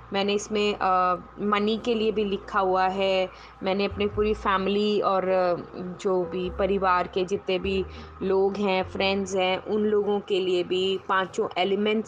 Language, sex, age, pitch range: Hindi, female, 20-39, 190-225 Hz